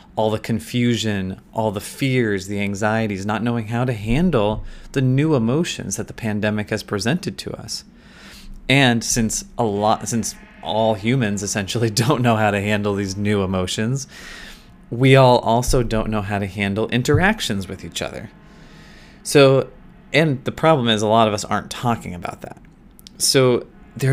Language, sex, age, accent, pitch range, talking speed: English, male, 20-39, American, 105-130 Hz, 165 wpm